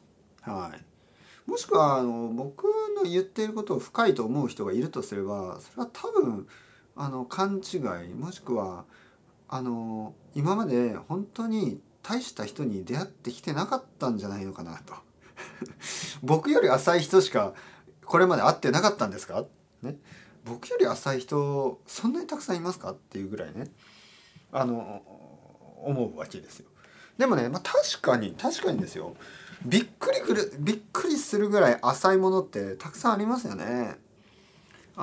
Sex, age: male, 40-59